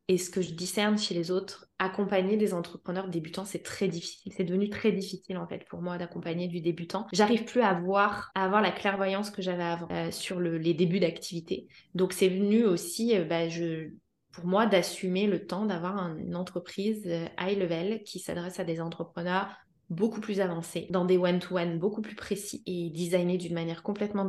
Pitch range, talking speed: 175-205 Hz, 195 wpm